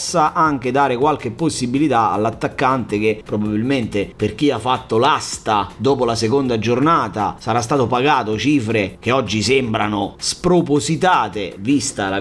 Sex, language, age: male, Italian, 30-49